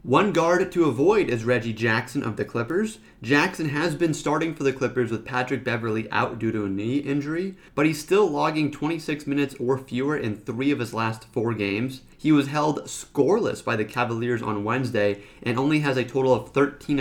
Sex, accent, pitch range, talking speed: male, American, 115-145 Hz, 200 wpm